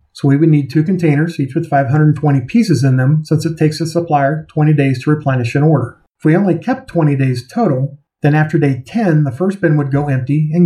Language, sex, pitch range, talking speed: English, male, 140-170 Hz, 230 wpm